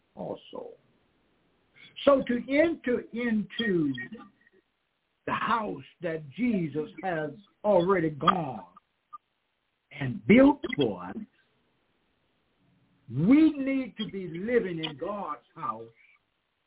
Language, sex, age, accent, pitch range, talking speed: English, male, 60-79, American, 155-235 Hz, 85 wpm